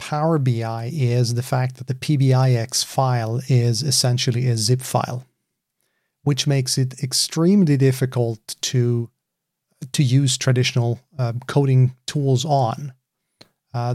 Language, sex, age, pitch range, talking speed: English, male, 40-59, 125-145 Hz, 120 wpm